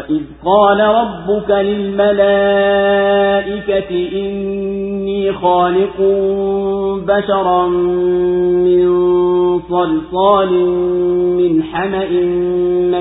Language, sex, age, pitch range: Swahili, male, 40-59, 180-200 Hz